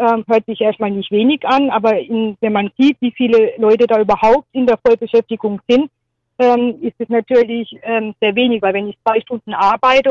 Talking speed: 190 wpm